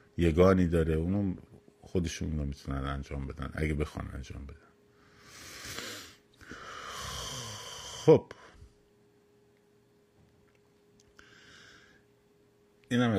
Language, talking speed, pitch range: Persian, 65 wpm, 80-105 Hz